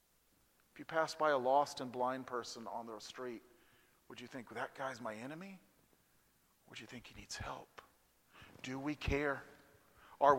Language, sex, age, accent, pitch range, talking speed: English, male, 40-59, American, 150-195 Hz, 170 wpm